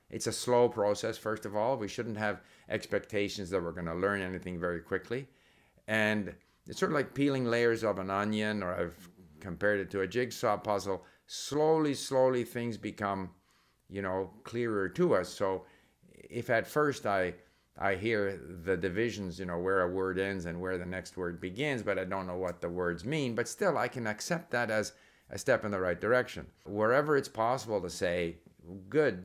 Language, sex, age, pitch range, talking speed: English, male, 50-69, 90-115 Hz, 195 wpm